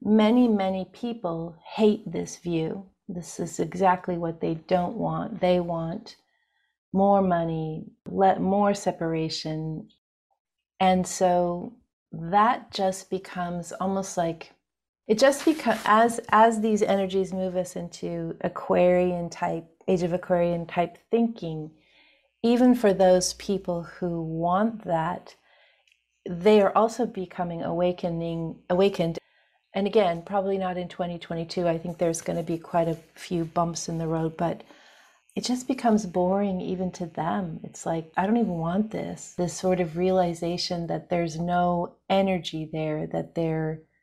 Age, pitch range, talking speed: 40-59, 170-200 Hz, 140 wpm